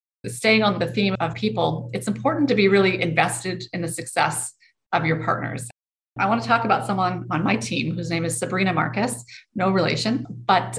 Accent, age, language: American, 30-49, English